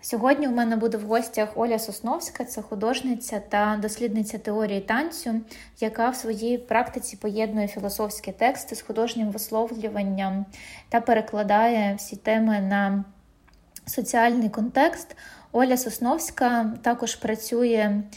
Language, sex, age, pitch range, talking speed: Ukrainian, female, 20-39, 215-240 Hz, 120 wpm